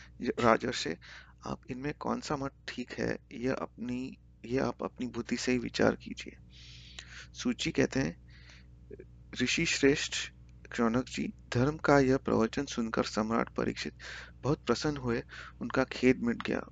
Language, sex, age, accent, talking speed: Hindi, male, 30-49, native, 140 wpm